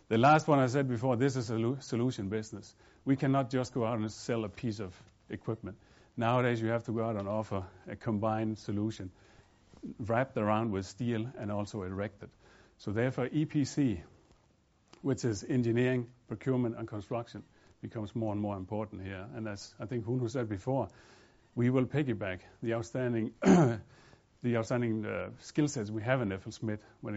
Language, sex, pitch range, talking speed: English, male, 105-130 Hz, 170 wpm